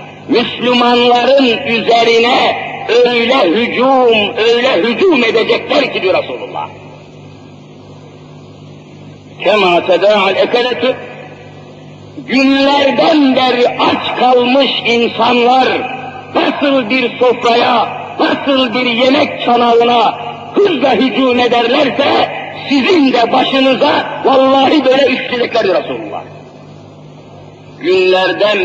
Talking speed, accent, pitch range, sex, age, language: 70 wpm, native, 220-265 Hz, male, 50-69, Turkish